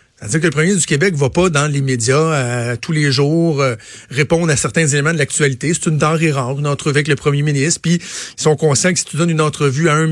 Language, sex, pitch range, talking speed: French, male, 135-165 Hz, 265 wpm